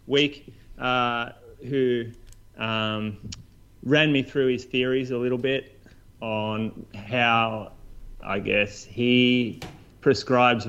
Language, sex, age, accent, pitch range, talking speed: English, male, 30-49, Australian, 105-125 Hz, 100 wpm